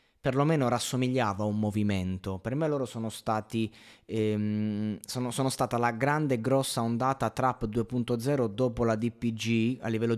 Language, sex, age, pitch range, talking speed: Italian, male, 20-39, 105-130 Hz, 145 wpm